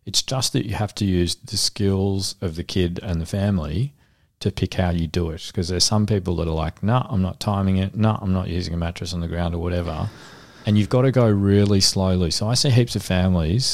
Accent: Australian